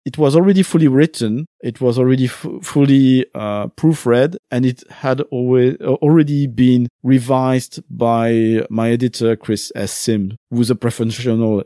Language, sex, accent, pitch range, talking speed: English, male, French, 115-145 Hz, 145 wpm